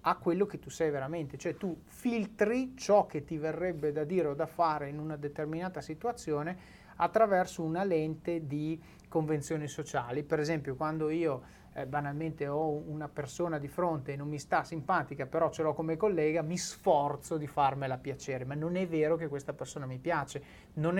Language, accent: Italian, native